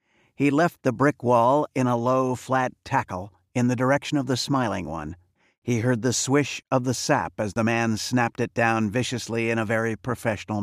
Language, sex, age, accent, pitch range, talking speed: English, male, 50-69, American, 110-135 Hz, 200 wpm